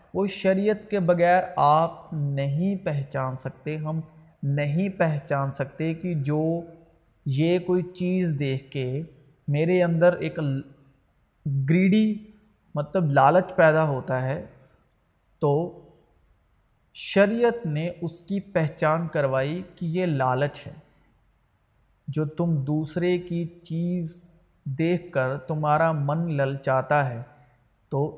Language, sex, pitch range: Urdu, male, 140-175 Hz